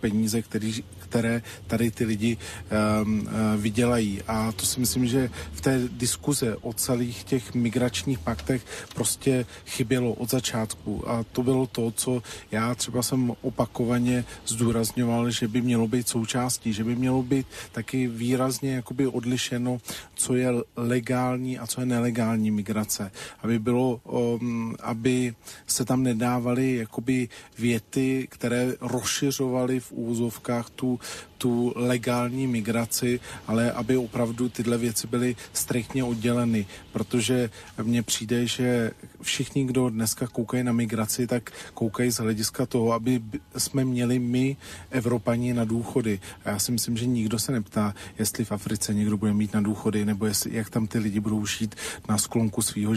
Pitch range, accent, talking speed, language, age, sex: 110-125 Hz, native, 145 wpm, Czech, 40-59, male